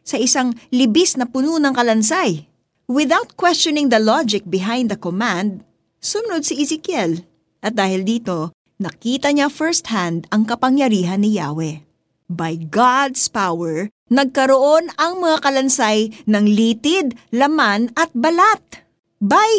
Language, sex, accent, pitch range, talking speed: Filipino, female, native, 230-345 Hz, 125 wpm